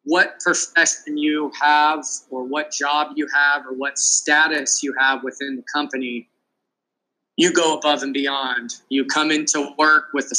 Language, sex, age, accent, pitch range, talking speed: English, male, 20-39, American, 130-150 Hz, 160 wpm